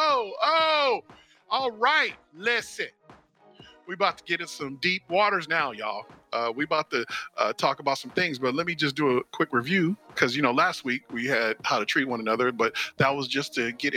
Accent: American